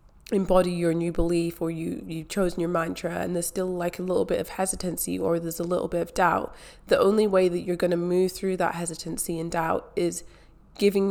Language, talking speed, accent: English, 220 wpm, British